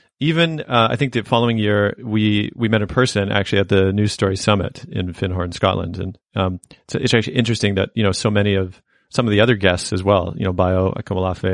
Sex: male